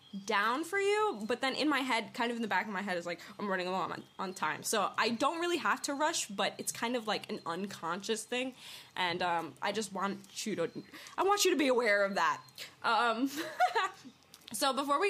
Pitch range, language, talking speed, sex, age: 200-285 Hz, English, 230 wpm, female, 10-29